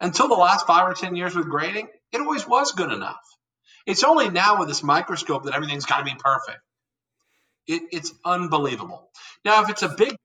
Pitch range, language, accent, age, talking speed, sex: 135-180 Hz, English, American, 50-69, 185 wpm, male